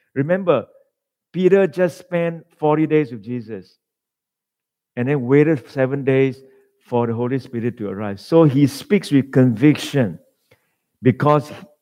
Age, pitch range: 50-69, 130-170 Hz